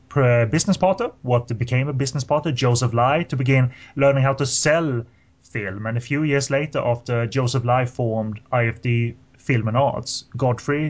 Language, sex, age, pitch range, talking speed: English, male, 20-39, 110-130 Hz, 165 wpm